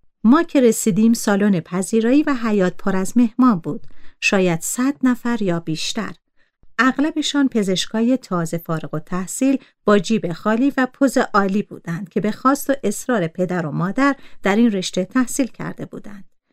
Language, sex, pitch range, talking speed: Persian, female, 180-250 Hz, 155 wpm